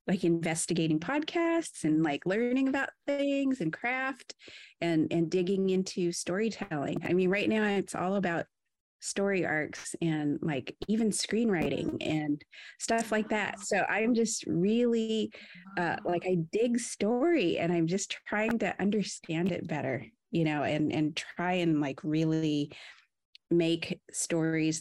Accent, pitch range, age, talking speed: American, 165-220 Hz, 30-49, 145 wpm